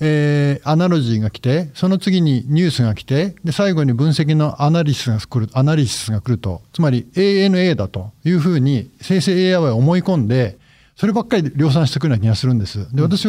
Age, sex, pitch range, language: 50-69, male, 125-170 Hz, Japanese